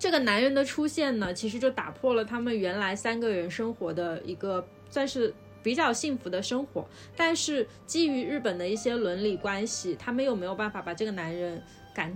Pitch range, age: 185-245 Hz, 20-39